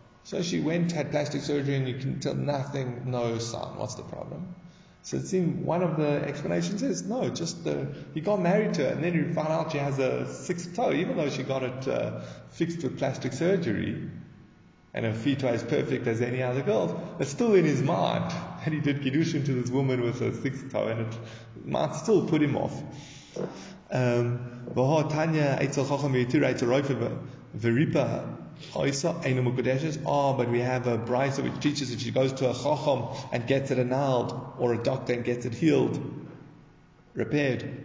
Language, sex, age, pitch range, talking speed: English, male, 20-39, 120-160 Hz, 180 wpm